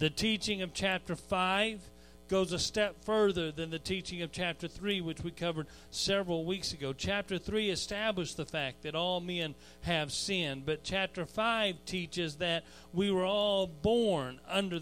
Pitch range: 170-195 Hz